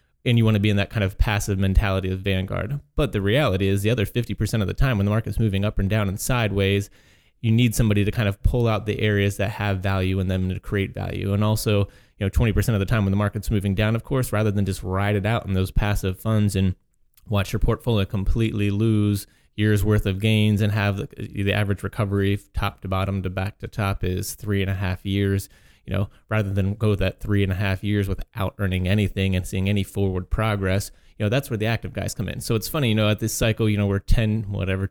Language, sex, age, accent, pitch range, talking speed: English, male, 30-49, American, 95-110 Hz, 250 wpm